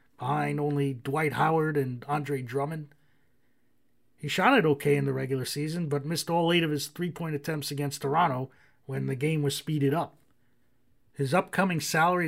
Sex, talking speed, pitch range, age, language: male, 165 wpm, 140-180 Hz, 30-49, English